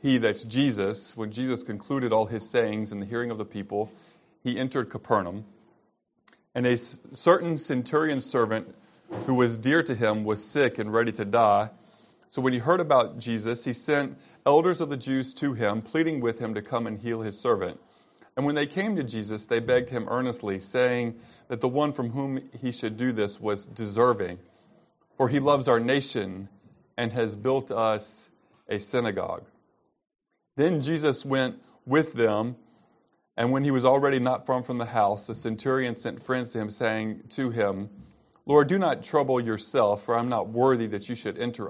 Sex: male